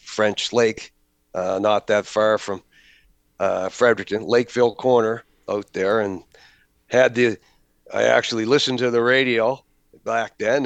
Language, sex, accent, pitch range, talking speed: English, male, American, 100-120 Hz, 135 wpm